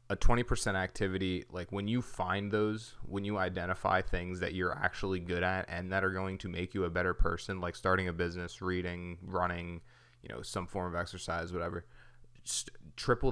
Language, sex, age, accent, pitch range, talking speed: English, male, 20-39, American, 90-105 Hz, 190 wpm